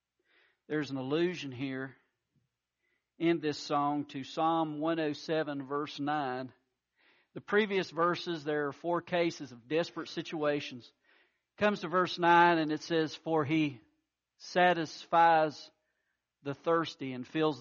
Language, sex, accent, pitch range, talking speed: English, male, American, 150-200 Hz, 125 wpm